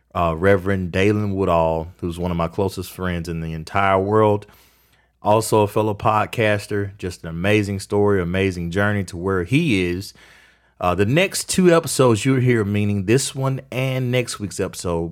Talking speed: 165 wpm